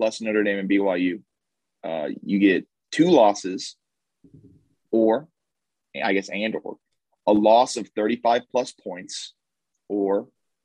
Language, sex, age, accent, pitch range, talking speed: English, male, 30-49, American, 100-120 Hz, 125 wpm